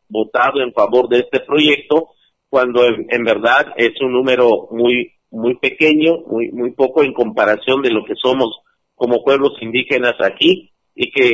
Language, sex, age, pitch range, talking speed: Spanish, male, 50-69, 120-160 Hz, 165 wpm